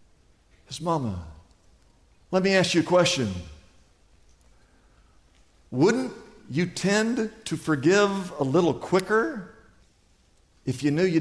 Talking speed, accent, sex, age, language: 105 wpm, American, male, 50-69, English